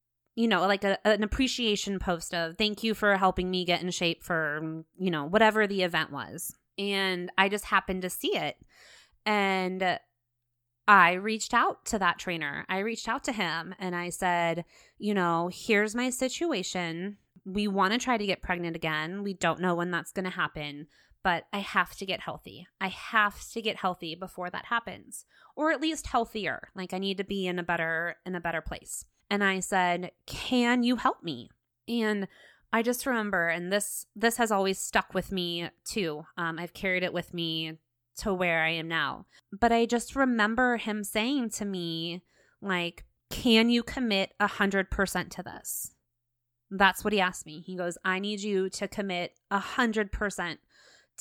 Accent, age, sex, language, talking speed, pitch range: American, 20-39, female, English, 180 wpm, 170-210 Hz